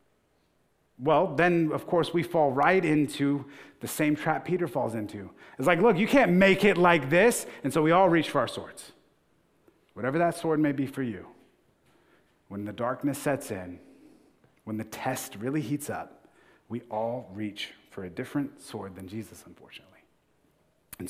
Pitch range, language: 110-150 Hz, English